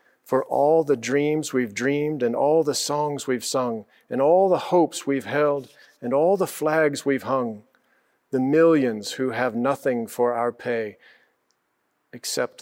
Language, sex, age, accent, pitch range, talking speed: English, male, 40-59, American, 120-145 Hz, 155 wpm